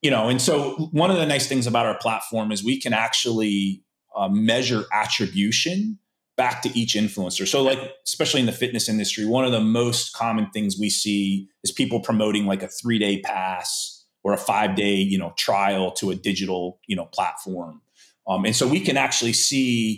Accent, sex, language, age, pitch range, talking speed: American, male, English, 30-49, 105-125 Hz, 190 wpm